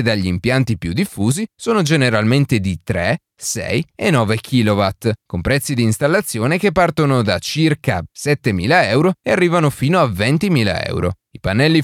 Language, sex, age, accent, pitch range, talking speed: Italian, male, 30-49, native, 115-165 Hz, 150 wpm